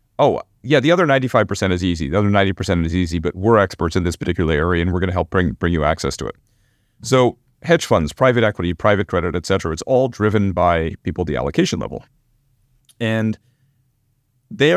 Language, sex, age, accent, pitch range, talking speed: English, male, 40-59, American, 95-125 Hz, 205 wpm